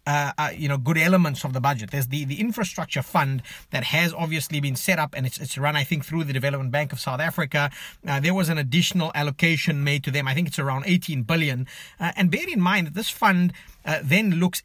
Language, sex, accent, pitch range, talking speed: English, male, South African, 140-170 Hz, 240 wpm